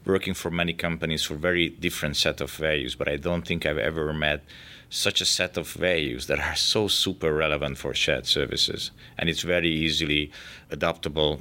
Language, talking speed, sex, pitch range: English, 185 wpm, male, 75-90 Hz